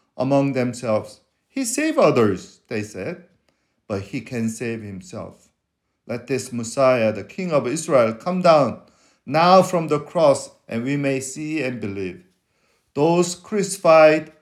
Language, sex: English, male